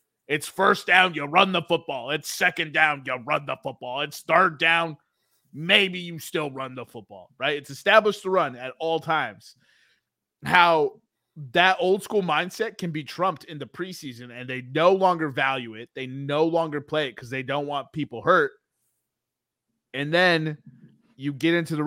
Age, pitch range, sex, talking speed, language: 20-39, 125-165 Hz, male, 180 wpm, English